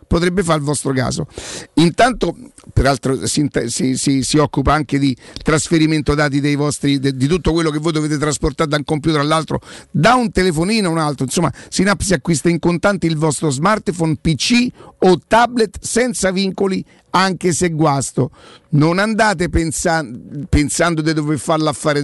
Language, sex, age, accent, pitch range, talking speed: Italian, male, 50-69, native, 150-200 Hz, 160 wpm